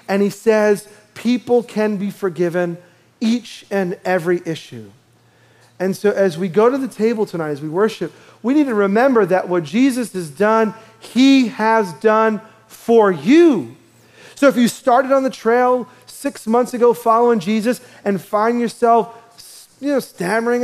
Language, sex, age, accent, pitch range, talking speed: English, male, 40-59, American, 180-235 Hz, 155 wpm